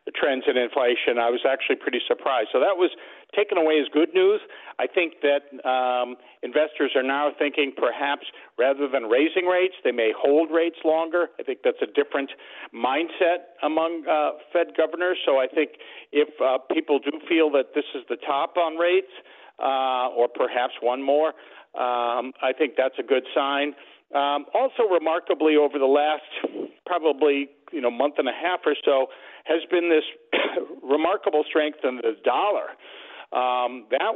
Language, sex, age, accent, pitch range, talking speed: English, male, 50-69, American, 135-215 Hz, 170 wpm